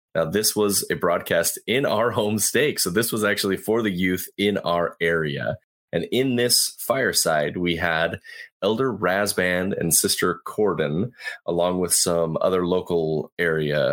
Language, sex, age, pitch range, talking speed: English, male, 30-49, 80-105 Hz, 155 wpm